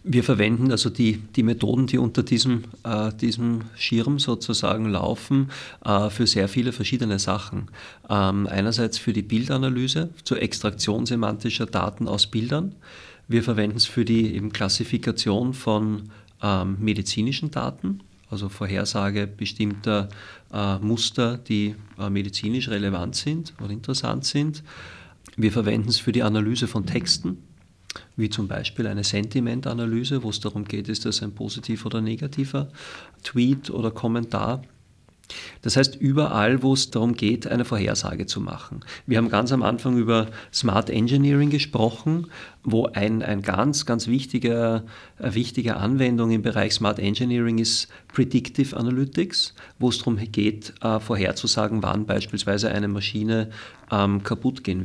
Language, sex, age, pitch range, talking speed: German, male, 40-59, 105-125 Hz, 140 wpm